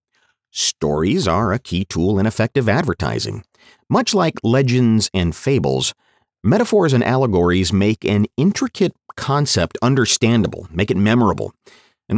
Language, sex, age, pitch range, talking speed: English, male, 40-59, 95-135 Hz, 125 wpm